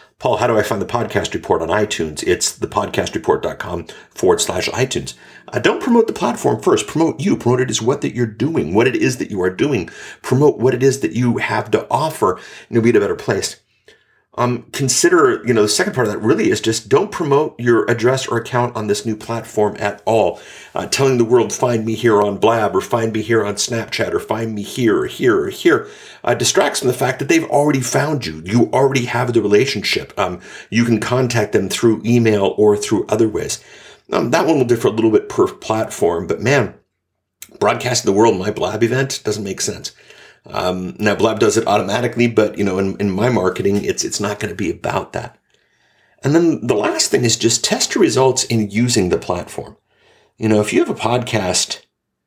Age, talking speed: 50-69, 215 wpm